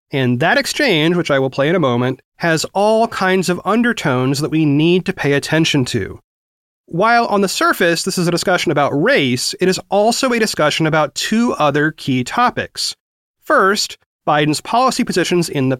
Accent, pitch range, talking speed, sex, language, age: American, 145-205 Hz, 180 wpm, male, English, 30-49